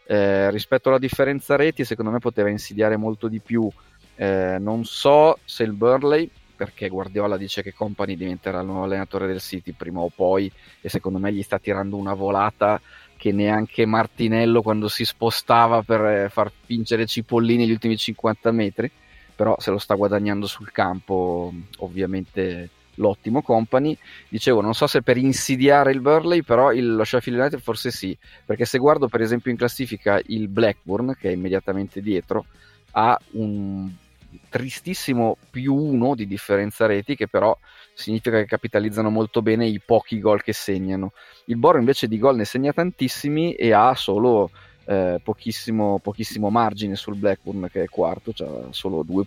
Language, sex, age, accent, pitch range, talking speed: Italian, male, 30-49, native, 100-120 Hz, 165 wpm